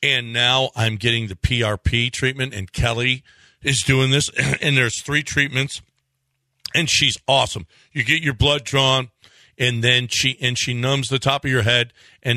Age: 50-69